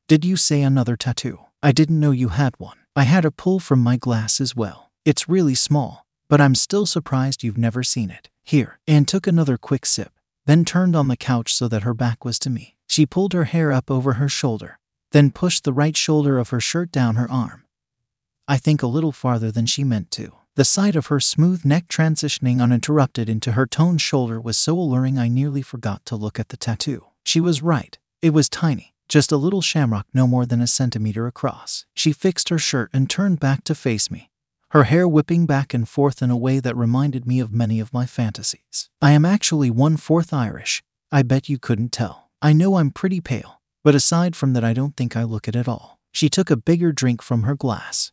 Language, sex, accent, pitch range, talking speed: English, male, American, 120-155 Hz, 220 wpm